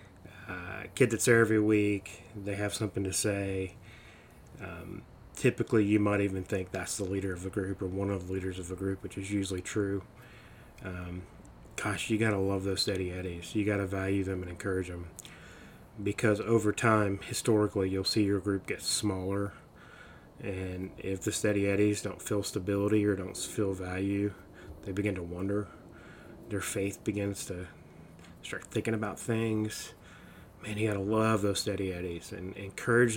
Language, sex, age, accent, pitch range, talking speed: English, male, 30-49, American, 95-105 Hz, 170 wpm